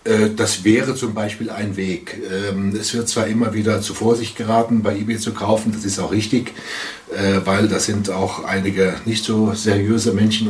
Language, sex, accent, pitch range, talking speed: German, male, German, 95-110 Hz, 175 wpm